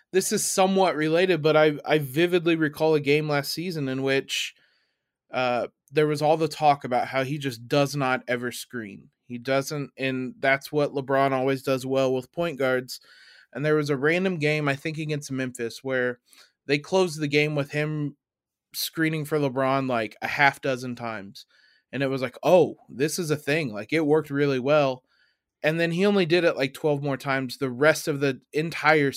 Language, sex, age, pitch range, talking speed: English, male, 20-39, 135-155 Hz, 195 wpm